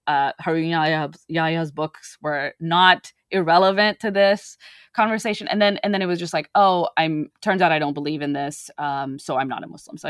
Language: English